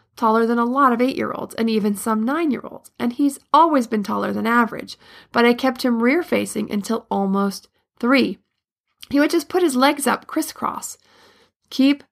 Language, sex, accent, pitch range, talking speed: English, female, American, 220-270 Hz, 170 wpm